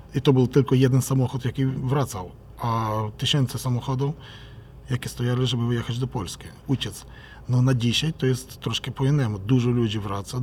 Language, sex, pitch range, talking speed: Polish, male, 120-140 Hz, 160 wpm